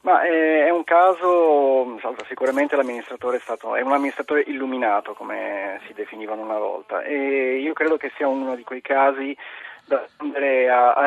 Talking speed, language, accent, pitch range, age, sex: 150 wpm, Italian, native, 115-145 Hz, 40-59, male